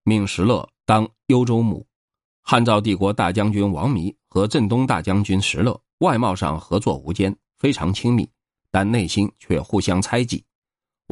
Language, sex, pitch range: Chinese, male, 95-120 Hz